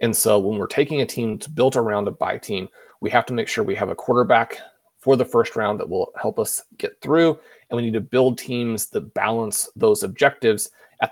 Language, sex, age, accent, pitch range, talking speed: English, male, 30-49, American, 110-135 Hz, 230 wpm